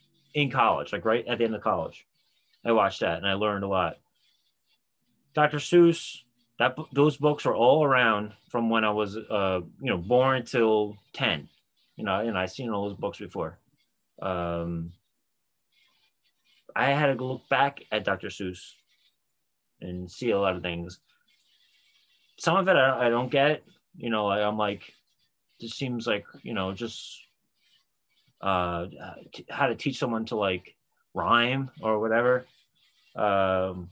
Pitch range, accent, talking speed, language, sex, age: 95-125 Hz, American, 155 wpm, English, male, 30-49